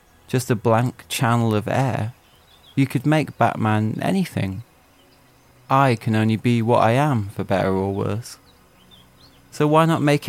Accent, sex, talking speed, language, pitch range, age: British, male, 150 wpm, English, 100-130 Hz, 20-39